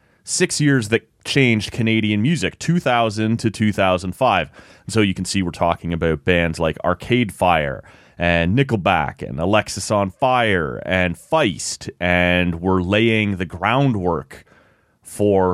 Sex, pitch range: male, 90-110 Hz